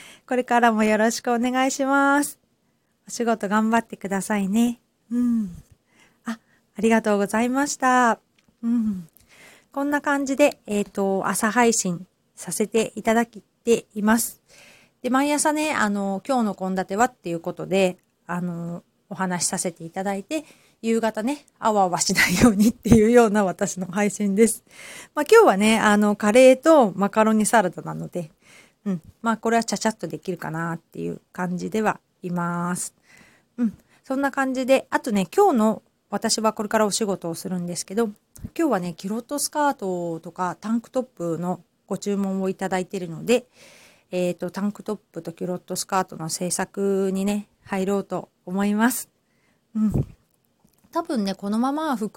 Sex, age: female, 40-59